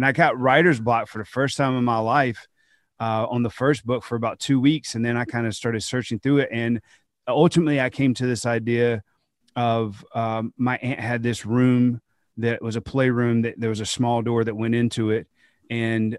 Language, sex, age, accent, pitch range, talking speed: English, male, 30-49, American, 115-130 Hz, 220 wpm